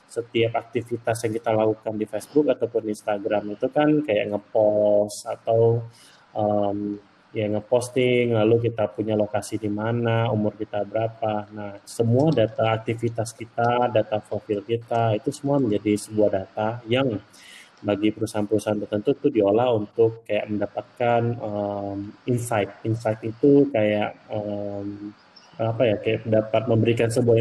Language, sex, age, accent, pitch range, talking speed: Indonesian, male, 20-39, native, 105-115 Hz, 135 wpm